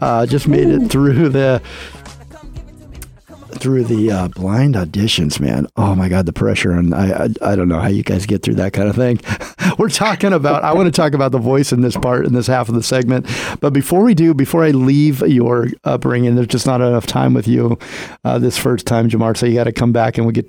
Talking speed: 235 wpm